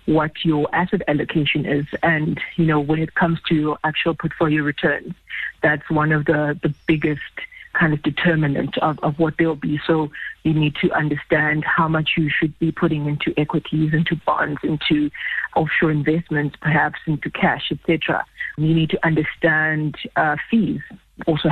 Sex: female